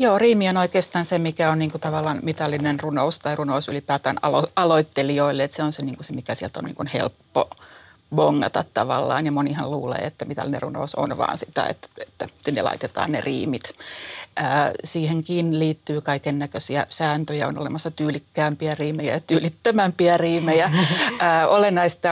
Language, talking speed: Finnish, 160 wpm